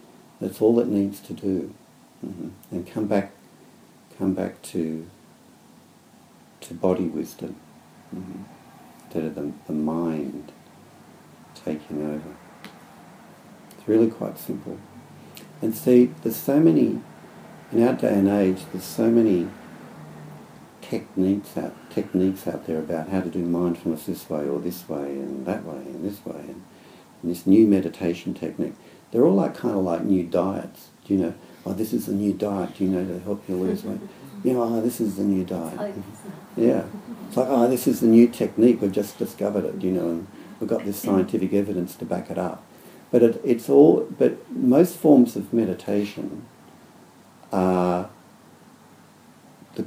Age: 60-79